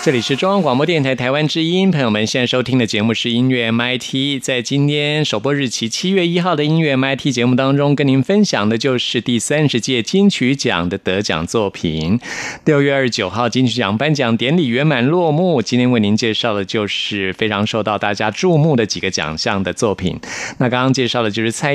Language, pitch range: Chinese, 110-140 Hz